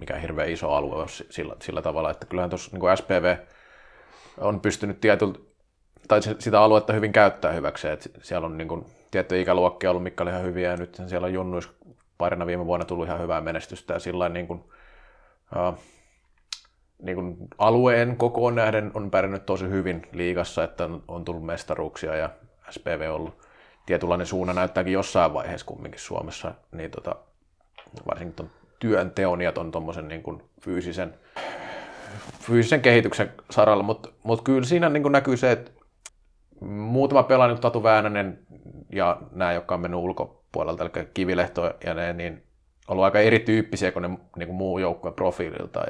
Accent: native